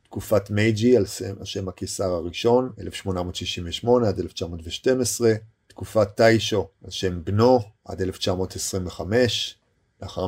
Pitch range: 95-115 Hz